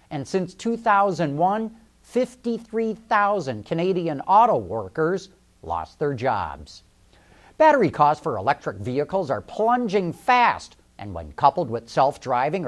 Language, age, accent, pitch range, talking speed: English, 50-69, American, 135-205 Hz, 110 wpm